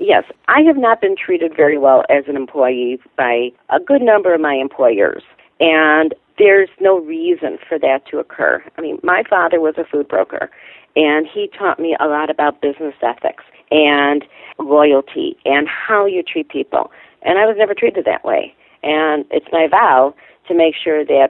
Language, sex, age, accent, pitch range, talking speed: English, female, 40-59, American, 145-195 Hz, 185 wpm